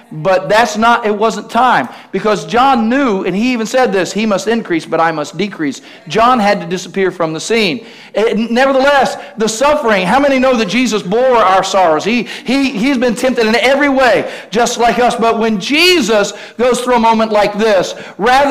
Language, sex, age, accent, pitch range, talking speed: English, male, 50-69, American, 215-265 Hz, 200 wpm